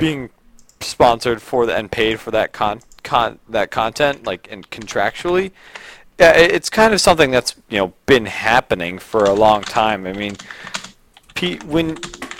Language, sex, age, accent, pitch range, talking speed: English, male, 30-49, American, 95-125 Hz, 150 wpm